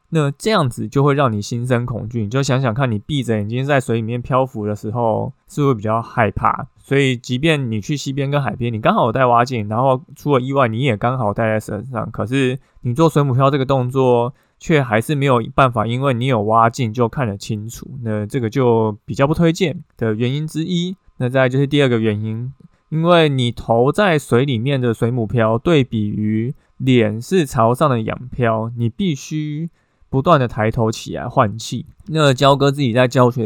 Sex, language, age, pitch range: male, Chinese, 20-39, 110-140 Hz